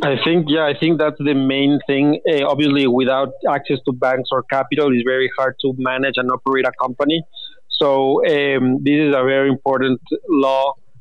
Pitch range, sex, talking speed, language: 130-145 Hz, male, 185 wpm, English